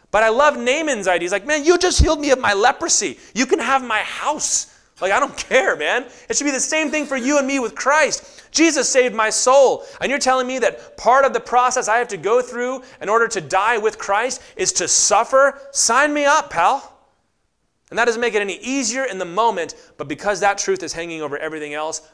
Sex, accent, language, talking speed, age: male, American, English, 235 wpm, 30-49